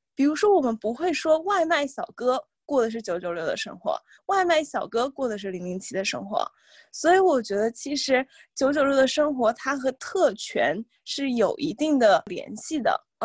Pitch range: 225-310 Hz